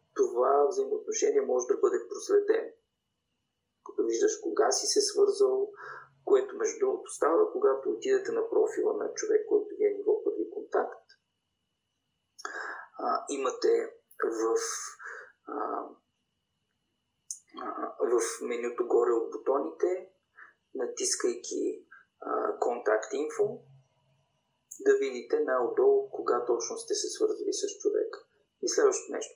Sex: male